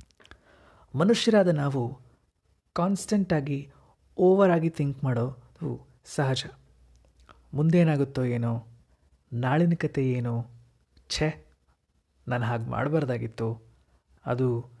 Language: Kannada